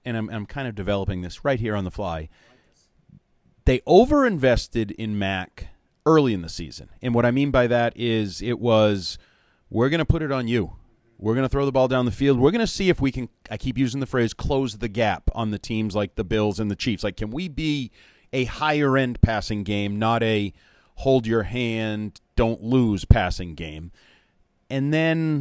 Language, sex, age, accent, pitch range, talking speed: English, male, 30-49, American, 105-145 Hz, 200 wpm